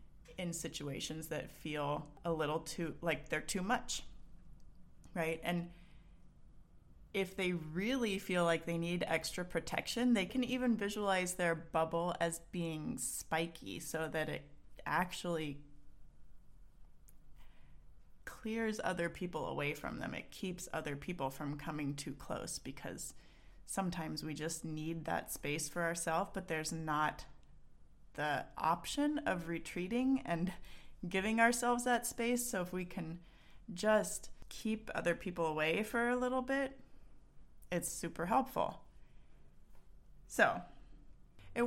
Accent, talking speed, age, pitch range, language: American, 125 wpm, 30-49, 160-200 Hz, English